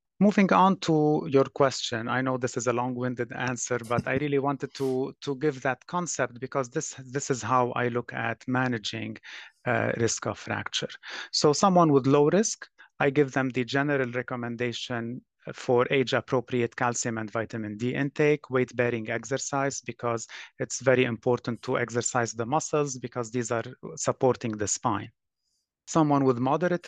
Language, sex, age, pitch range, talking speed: English, male, 30-49, 120-140 Hz, 160 wpm